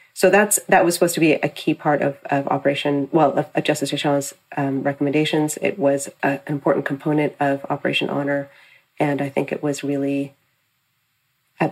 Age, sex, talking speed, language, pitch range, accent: 30-49, female, 185 wpm, English, 140-160 Hz, American